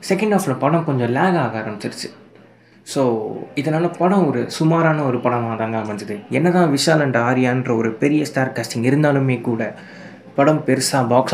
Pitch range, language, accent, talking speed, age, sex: 115-140 Hz, Tamil, native, 155 wpm, 20-39, male